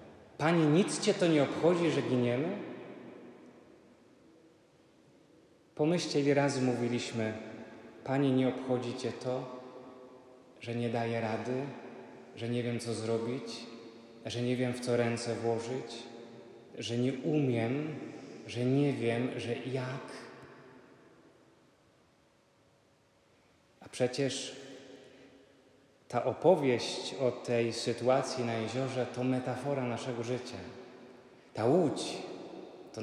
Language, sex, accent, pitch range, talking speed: Polish, male, native, 120-145 Hz, 105 wpm